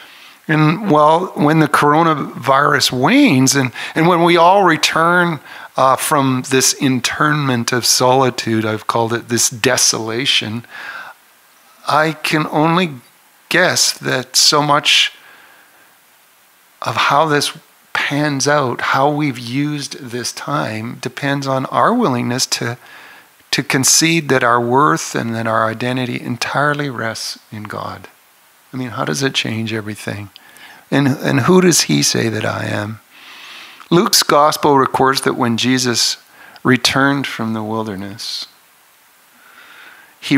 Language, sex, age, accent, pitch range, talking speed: English, male, 50-69, American, 110-145 Hz, 125 wpm